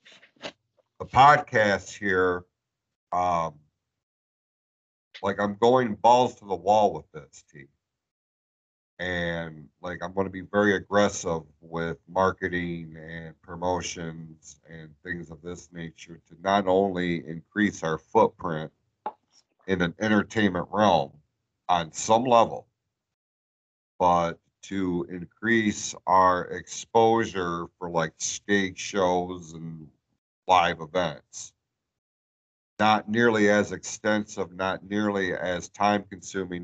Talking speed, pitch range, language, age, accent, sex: 105 wpm, 80-100 Hz, English, 50-69, American, male